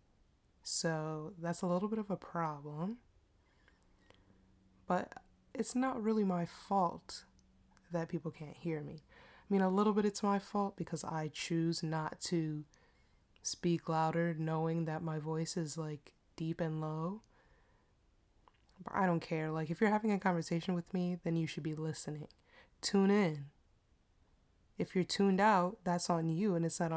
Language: English